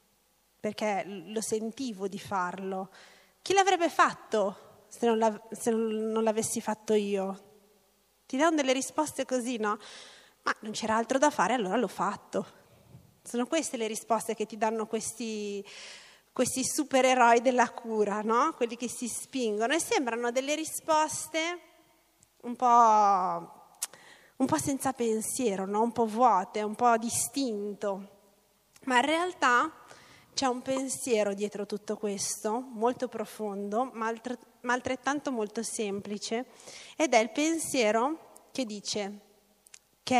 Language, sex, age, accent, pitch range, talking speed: Italian, female, 30-49, native, 210-260 Hz, 130 wpm